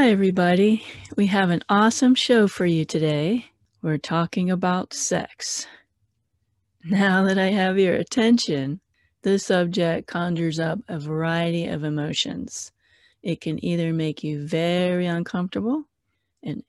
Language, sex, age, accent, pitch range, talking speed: English, female, 40-59, American, 155-215 Hz, 125 wpm